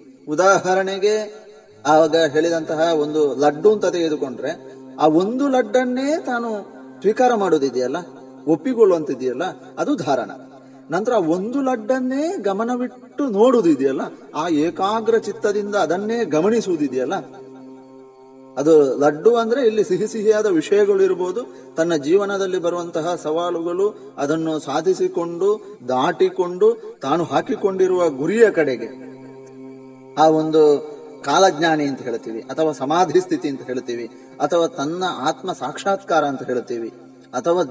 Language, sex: Kannada, male